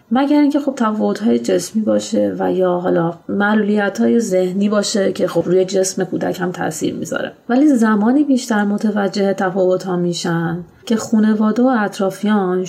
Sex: female